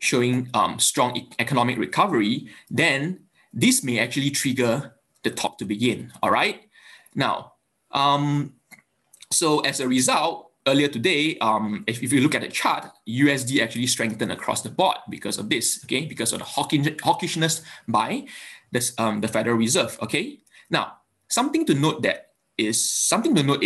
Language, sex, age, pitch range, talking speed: English, male, 20-39, 115-145 Hz, 160 wpm